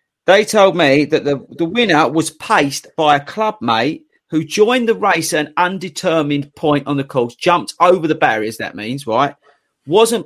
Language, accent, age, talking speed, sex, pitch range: English, British, 40-59, 185 wpm, male, 135-180 Hz